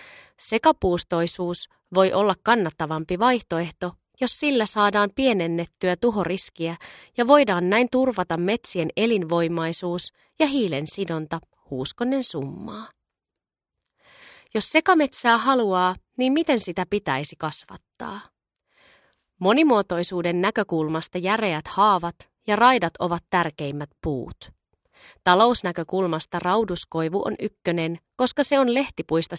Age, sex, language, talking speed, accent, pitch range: 30-49, female, Finnish, 95 wpm, native, 170-230 Hz